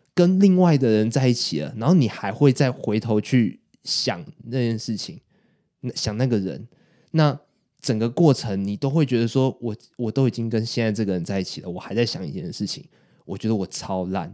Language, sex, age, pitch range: Chinese, male, 20-39, 105-140 Hz